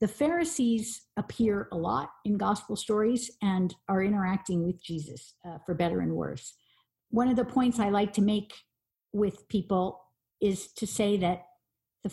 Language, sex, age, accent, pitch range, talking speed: English, female, 50-69, American, 175-220 Hz, 165 wpm